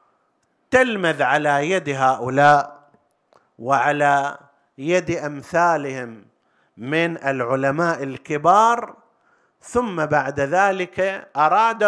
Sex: male